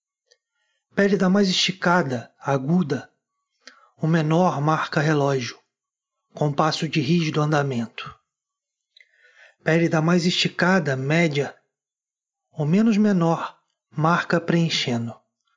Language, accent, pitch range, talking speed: Portuguese, Brazilian, 160-215 Hz, 80 wpm